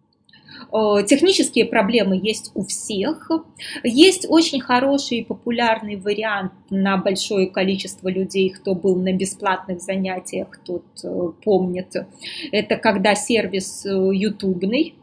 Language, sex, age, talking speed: Russian, female, 20-39, 105 wpm